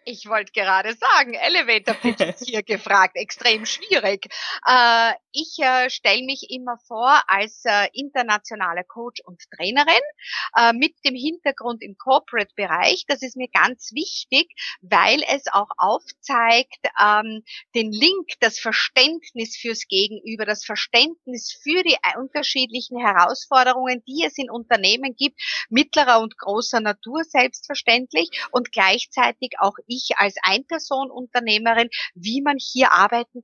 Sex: female